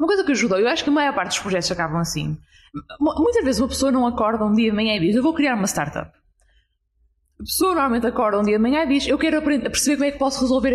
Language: English